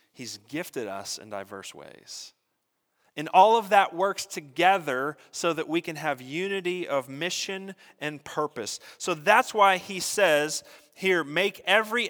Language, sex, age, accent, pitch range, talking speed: English, male, 30-49, American, 120-180 Hz, 150 wpm